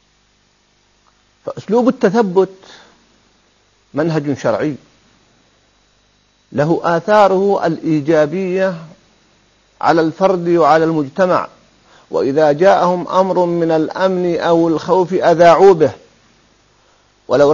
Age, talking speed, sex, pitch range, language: 50-69, 70 wpm, male, 155-200 Hz, Arabic